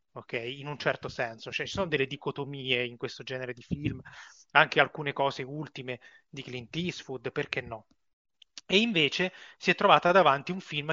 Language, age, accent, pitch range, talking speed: Italian, 30-49, native, 130-155 Hz, 175 wpm